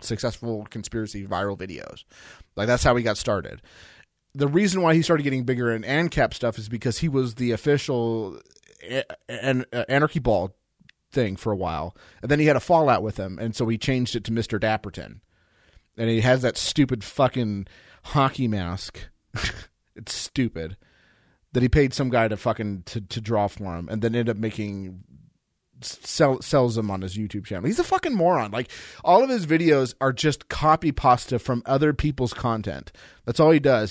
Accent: American